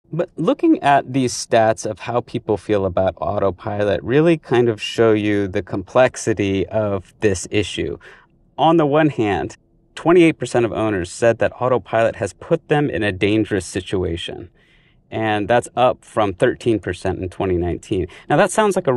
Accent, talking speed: American, 160 wpm